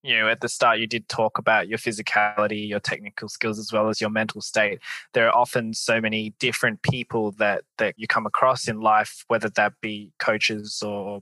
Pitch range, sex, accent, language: 110-125 Hz, male, Australian, English